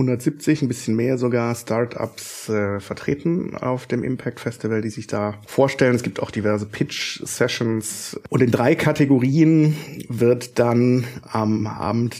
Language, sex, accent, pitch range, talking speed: German, male, German, 105-125 Hz, 150 wpm